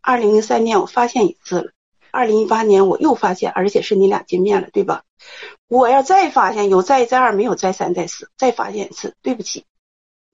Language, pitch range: Chinese, 210-300 Hz